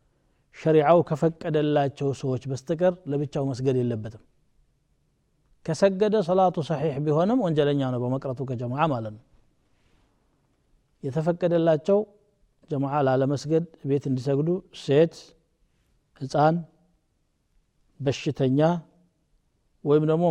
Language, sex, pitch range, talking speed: Amharic, male, 125-155 Hz, 75 wpm